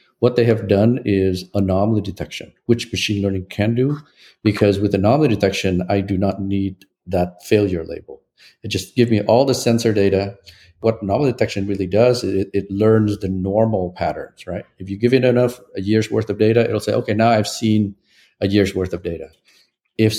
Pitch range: 95-115 Hz